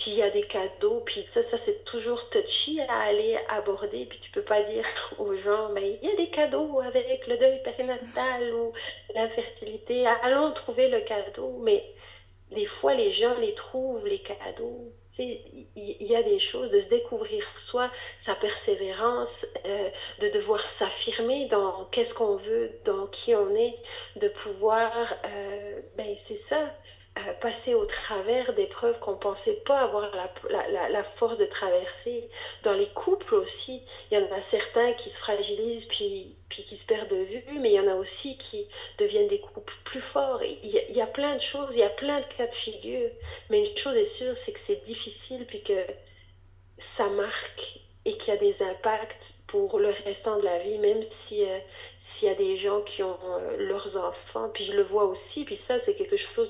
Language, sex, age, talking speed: French, female, 40-59, 200 wpm